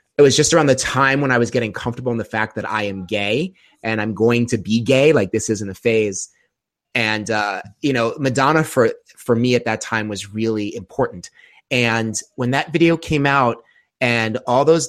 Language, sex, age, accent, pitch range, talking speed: English, male, 30-49, American, 110-140 Hz, 210 wpm